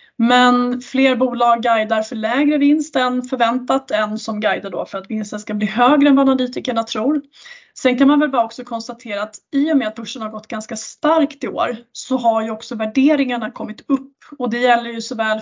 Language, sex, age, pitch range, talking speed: Swedish, female, 20-39, 220-265 Hz, 210 wpm